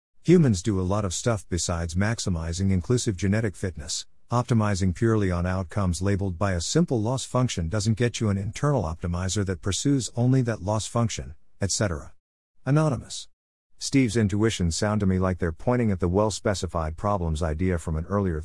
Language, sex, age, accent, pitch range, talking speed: English, male, 50-69, American, 90-115 Hz, 165 wpm